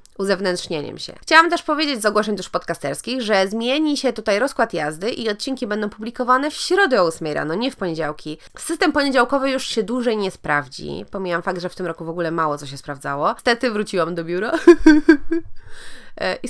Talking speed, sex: 185 wpm, female